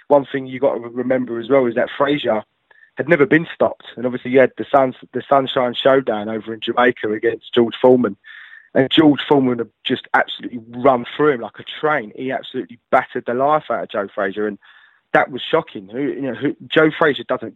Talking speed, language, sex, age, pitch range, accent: 210 wpm, English, male, 20-39, 125-155 Hz, British